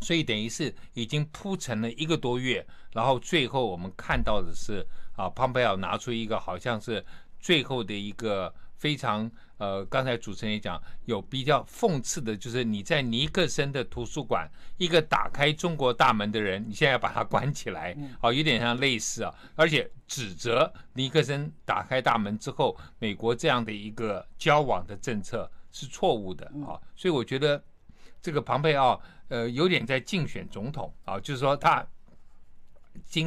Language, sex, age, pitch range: Chinese, male, 60-79, 100-135 Hz